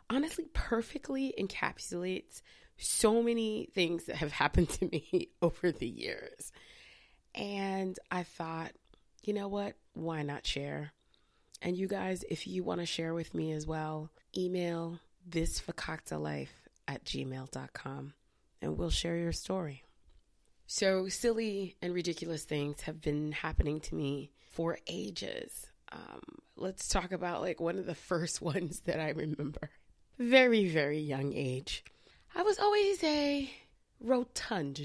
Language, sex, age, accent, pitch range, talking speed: English, female, 20-39, American, 150-200 Hz, 135 wpm